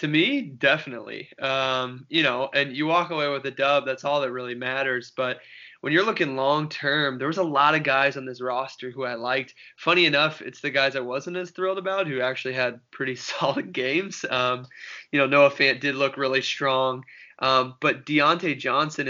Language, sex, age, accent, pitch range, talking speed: English, male, 20-39, American, 130-150 Hz, 205 wpm